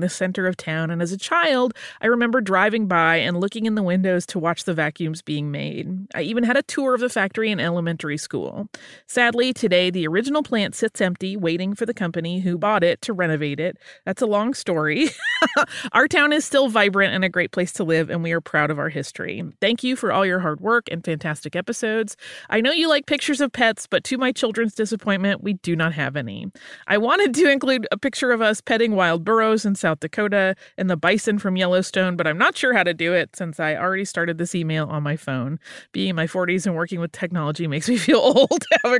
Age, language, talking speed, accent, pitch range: 30-49, English, 230 wpm, American, 165-230 Hz